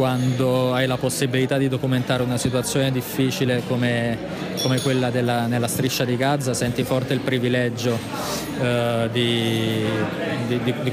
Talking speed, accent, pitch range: 135 wpm, native, 120-140 Hz